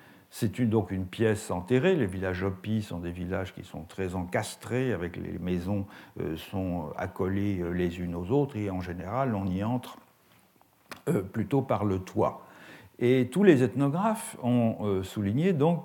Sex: male